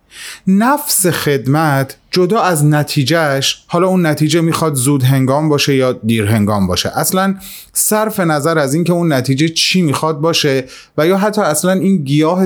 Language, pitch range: Persian, 120-180 Hz